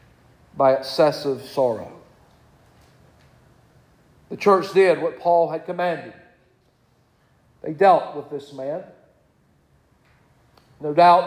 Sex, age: male, 50-69